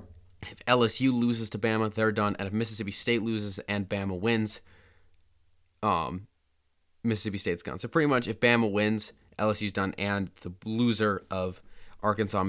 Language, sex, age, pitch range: English, male, 20-39, 95-115 Hz